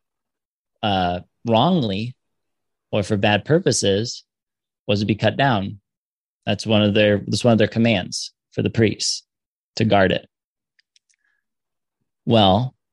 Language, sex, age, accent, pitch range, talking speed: English, male, 20-39, American, 105-120 Hz, 125 wpm